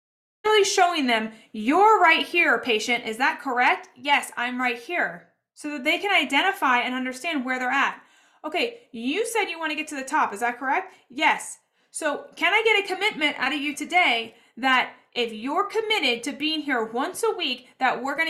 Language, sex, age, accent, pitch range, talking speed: English, female, 30-49, American, 235-300 Hz, 200 wpm